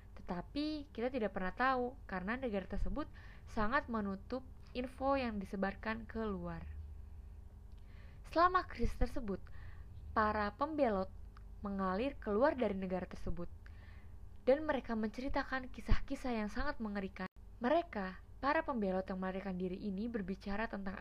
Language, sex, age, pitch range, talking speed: Indonesian, female, 20-39, 185-240 Hz, 115 wpm